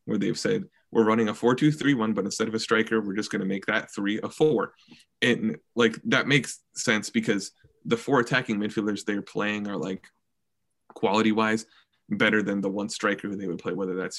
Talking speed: 200 wpm